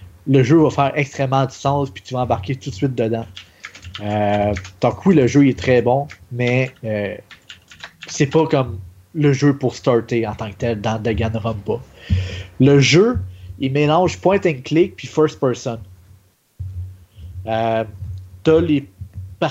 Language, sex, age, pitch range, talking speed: French, male, 30-49, 110-150 Hz, 155 wpm